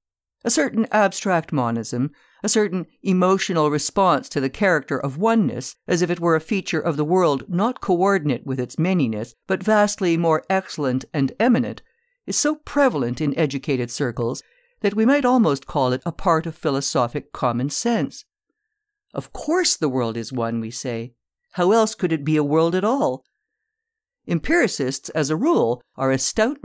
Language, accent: English, American